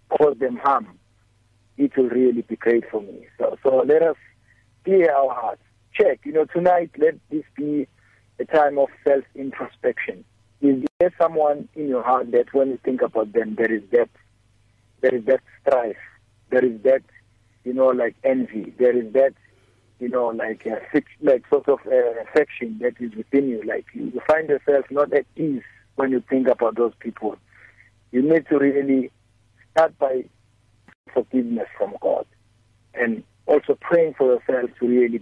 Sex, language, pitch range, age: male, English, 110-150 Hz, 50-69